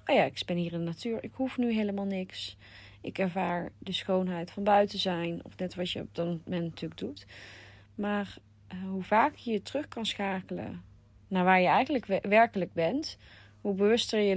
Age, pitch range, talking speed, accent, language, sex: 30-49, 140-195 Hz, 190 wpm, Dutch, Dutch, female